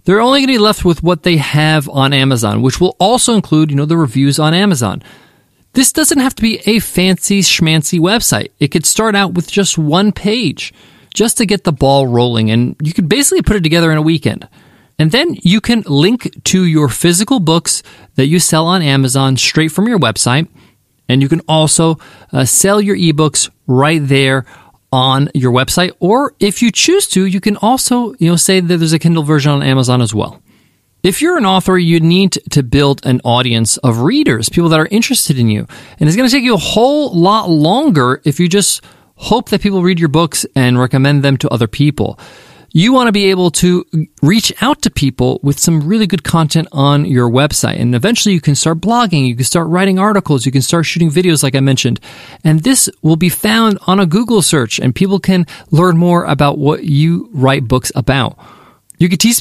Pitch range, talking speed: 140-195 Hz, 210 wpm